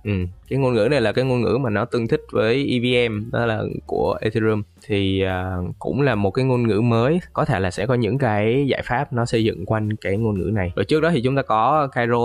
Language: Vietnamese